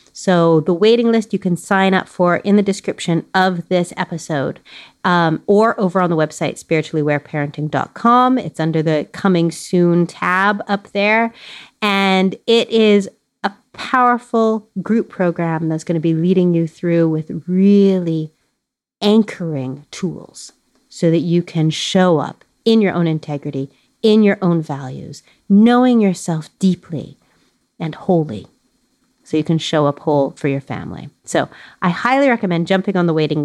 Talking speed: 150 wpm